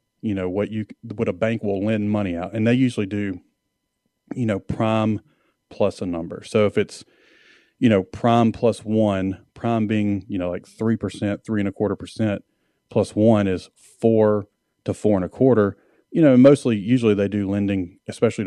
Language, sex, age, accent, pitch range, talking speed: English, male, 30-49, American, 95-115 Hz, 185 wpm